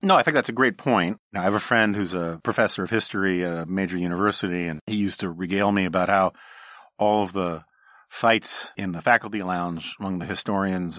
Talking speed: 220 wpm